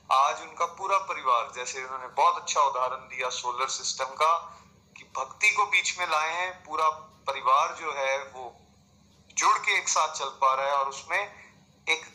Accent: native